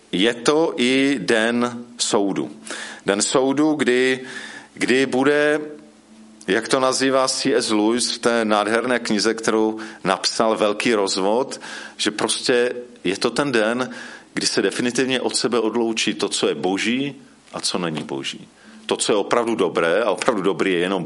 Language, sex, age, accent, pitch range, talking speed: Czech, male, 40-59, native, 110-145 Hz, 150 wpm